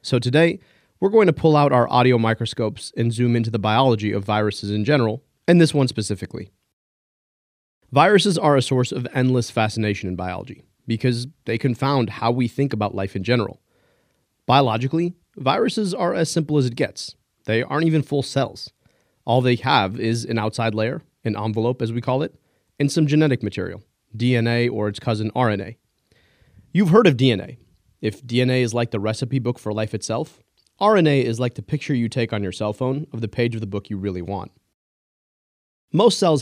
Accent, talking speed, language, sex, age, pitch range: American, 185 wpm, English, male, 30-49, 110-140 Hz